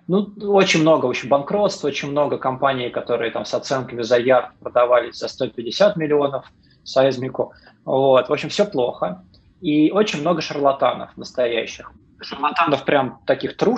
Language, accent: Russian, native